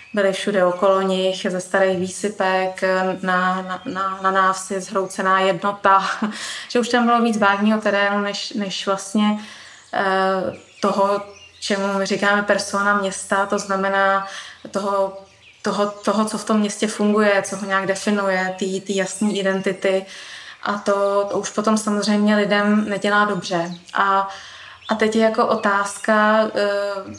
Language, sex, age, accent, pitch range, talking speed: Czech, female, 20-39, native, 195-210 Hz, 140 wpm